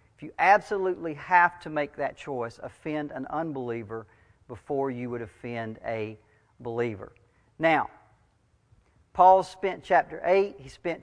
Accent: American